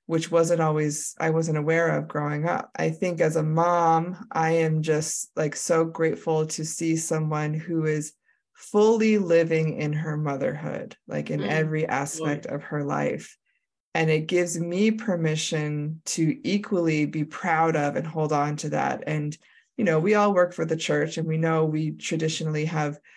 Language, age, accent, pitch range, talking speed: English, 20-39, American, 150-170 Hz, 175 wpm